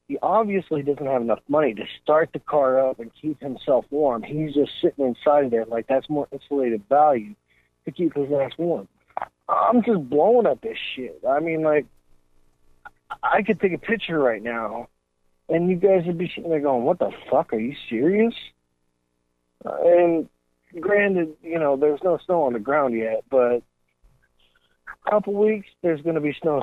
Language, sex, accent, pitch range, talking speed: English, male, American, 120-175 Hz, 185 wpm